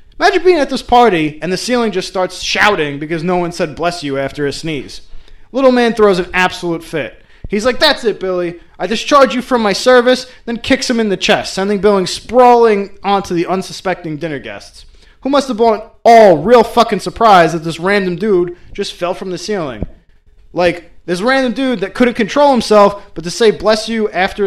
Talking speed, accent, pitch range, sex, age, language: 200 wpm, American, 160-225 Hz, male, 20-39, English